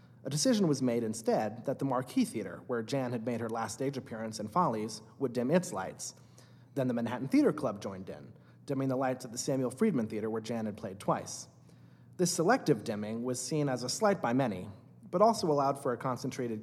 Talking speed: 215 wpm